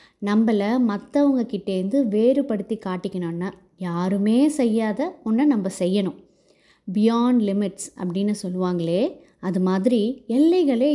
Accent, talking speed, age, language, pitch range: native, 95 wpm, 20-39, Tamil, 195-250 Hz